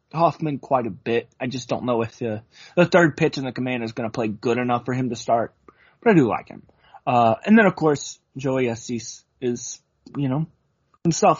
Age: 20-39